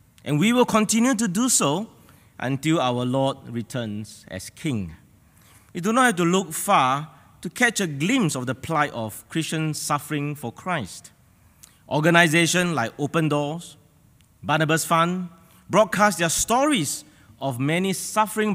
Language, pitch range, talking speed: English, 120-175 Hz, 140 wpm